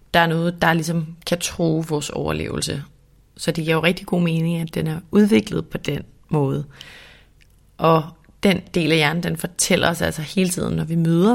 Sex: female